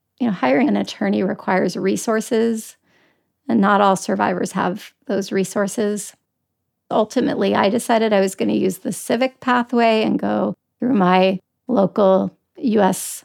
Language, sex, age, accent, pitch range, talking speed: English, female, 30-49, American, 195-230 Hz, 140 wpm